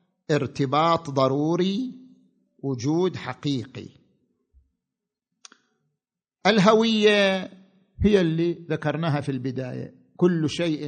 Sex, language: male, Arabic